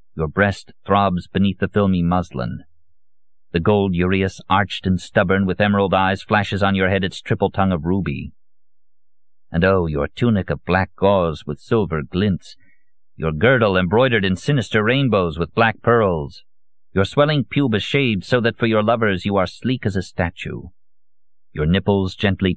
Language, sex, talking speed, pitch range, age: English, male, 165 wpm, 90-105 Hz, 50-69